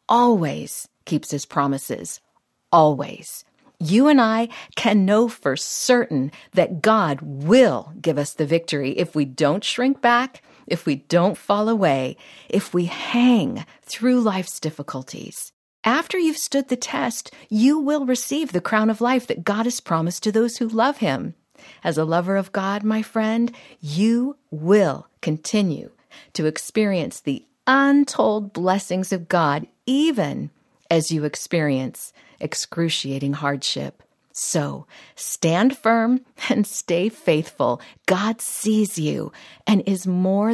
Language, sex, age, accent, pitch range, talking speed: English, female, 50-69, American, 155-235 Hz, 135 wpm